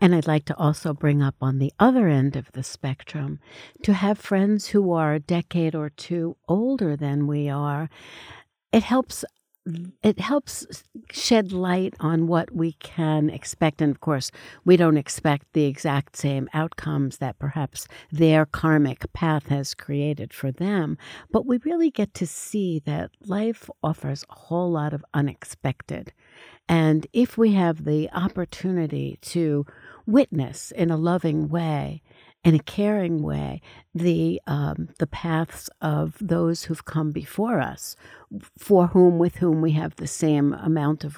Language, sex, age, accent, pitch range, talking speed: English, female, 60-79, American, 145-180 Hz, 155 wpm